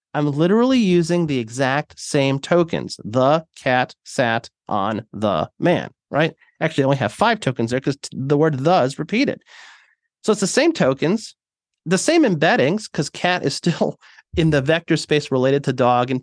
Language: English